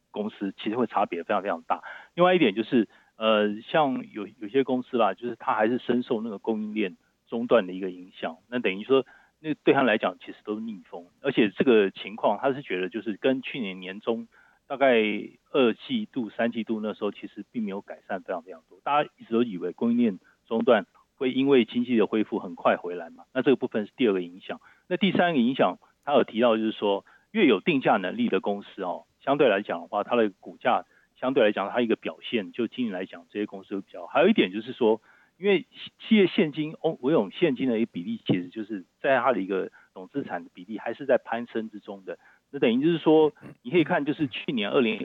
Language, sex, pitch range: Chinese, male, 105-150 Hz